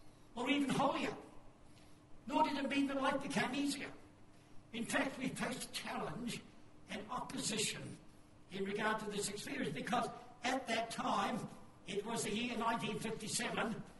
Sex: male